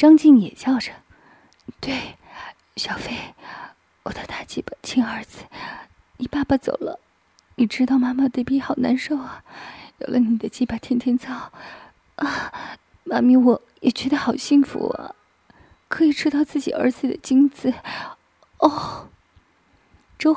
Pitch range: 200-265 Hz